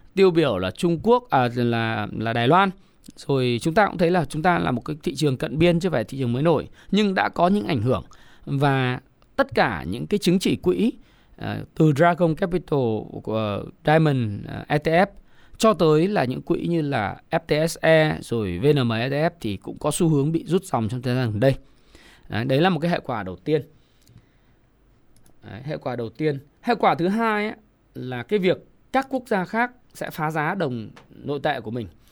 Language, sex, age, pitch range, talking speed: Vietnamese, male, 20-39, 125-175 Hz, 205 wpm